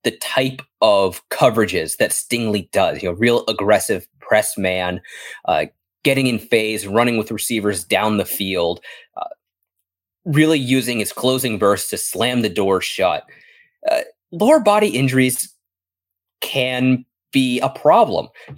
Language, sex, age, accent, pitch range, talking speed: English, male, 20-39, American, 100-145 Hz, 140 wpm